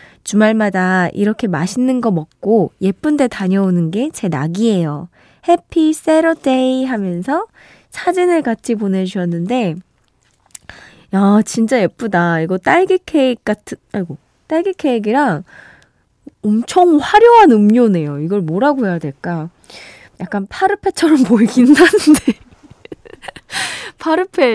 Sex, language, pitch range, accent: female, Korean, 185-290 Hz, native